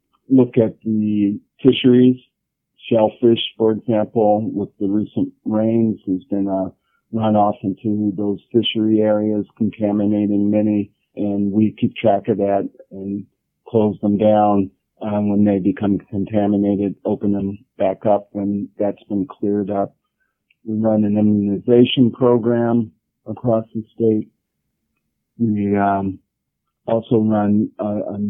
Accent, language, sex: American, English, male